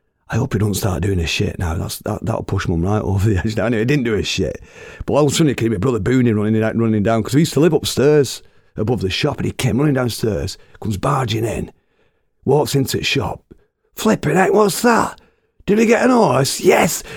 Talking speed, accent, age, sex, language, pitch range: 245 wpm, British, 40-59, male, English, 95-130 Hz